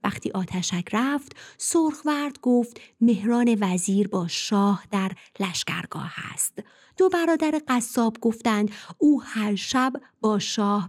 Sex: female